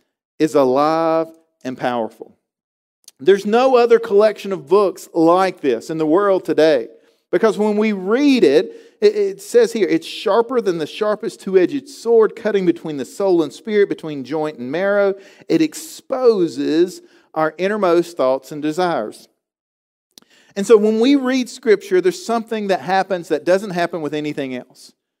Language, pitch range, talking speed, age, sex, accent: English, 170-225 Hz, 150 wpm, 40-59, male, American